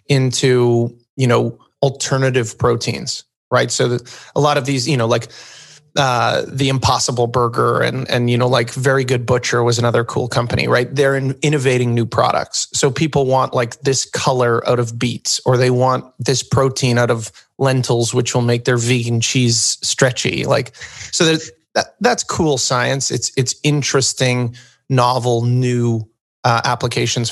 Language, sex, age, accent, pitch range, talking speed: English, male, 30-49, American, 120-135 Hz, 160 wpm